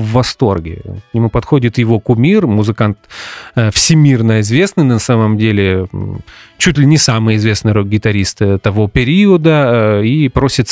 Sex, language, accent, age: male, Russian, native, 30-49